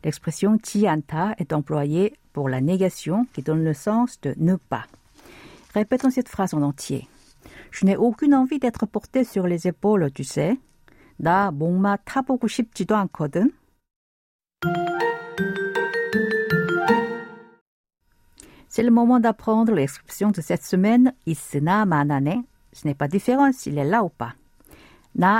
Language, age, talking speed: French, 50-69, 115 wpm